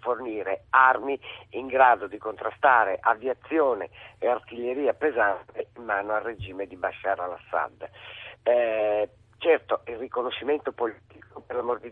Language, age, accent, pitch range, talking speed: Italian, 50-69, native, 105-135 Hz, 125 wpm